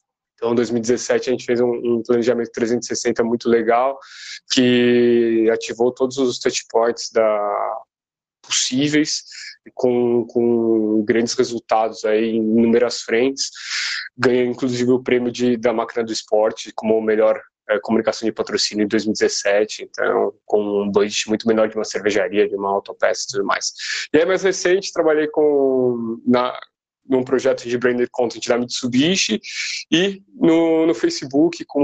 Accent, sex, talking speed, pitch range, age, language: Brazilian, male, 135 wpm, 115-135 Hz, 20-39, Portuguese